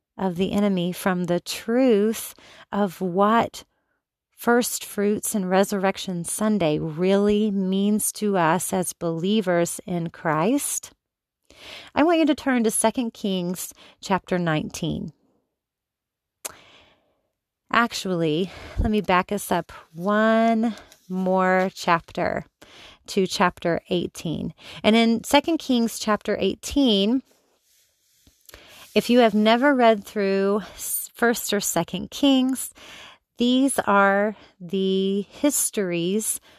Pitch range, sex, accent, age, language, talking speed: 185-230 Hz, female, American, 30-49, English, 105 wpm